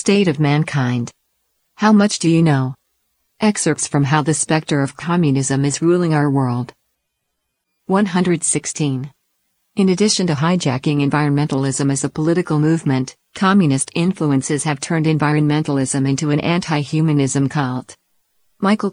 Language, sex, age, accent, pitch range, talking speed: English, female, 50-69, American, 140-165 Hz, 125 wpm